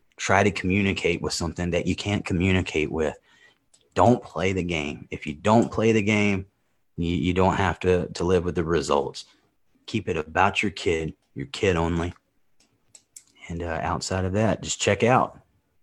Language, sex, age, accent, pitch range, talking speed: English, male, 30-49, American, 90-105 Hz, 175 wpm